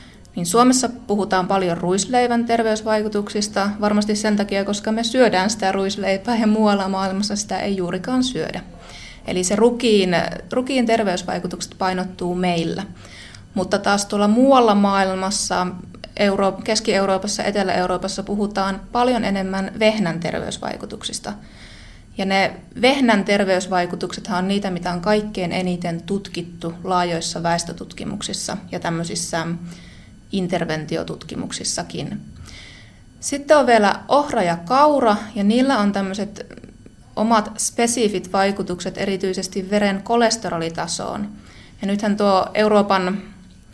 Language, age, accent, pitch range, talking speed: Finnish, 20-39, native, 180-210 Hz, 105 wpm